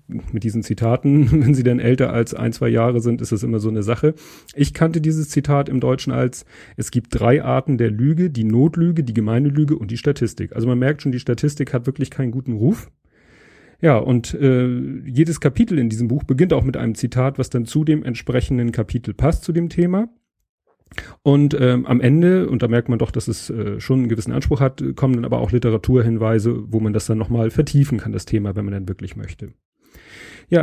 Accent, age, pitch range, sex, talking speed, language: German, 40-59, 115-140 Hz, male, 215 wpm, German